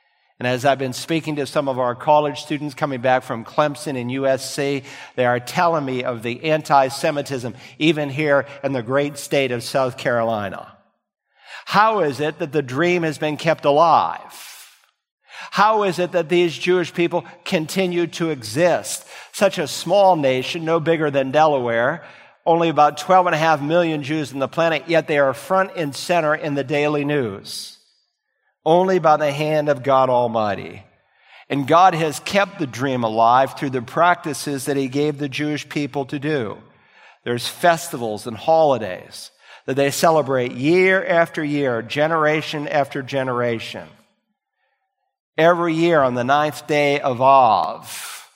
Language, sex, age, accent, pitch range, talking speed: English, male, 50-69, American, 135-165 Hz, 160 wpm